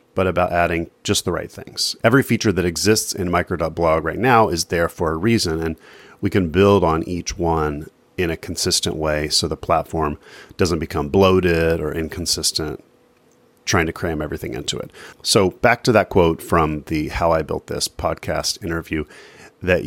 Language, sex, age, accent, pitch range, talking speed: English, male, 30-49, American, 85-110 Hz, 180 wpm